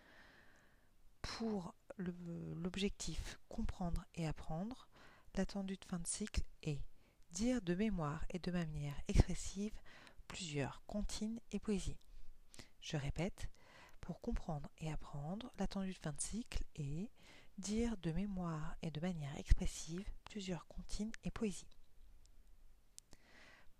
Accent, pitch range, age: French, 155-210 Hz, 40-59